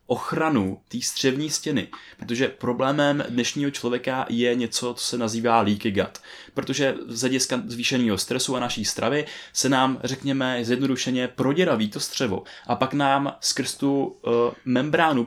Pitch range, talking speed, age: 115-140 Hz, 145 wpm, 20-39